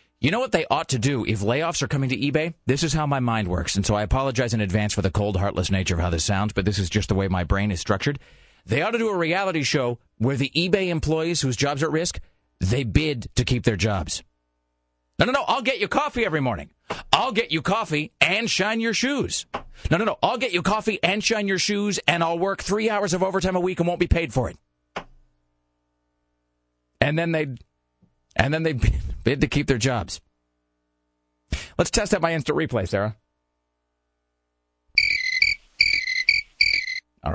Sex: male